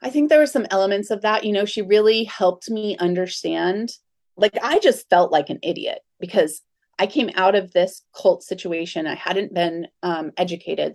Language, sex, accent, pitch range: English, female, American, 170-215 Hz